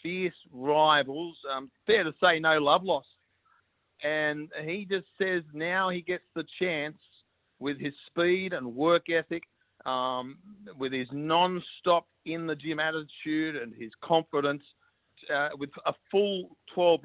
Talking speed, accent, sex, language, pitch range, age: 135 wpm, Australian, male, English, 145-170 Hz, 50-69